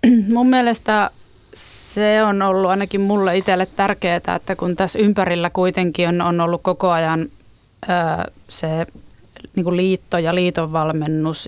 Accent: native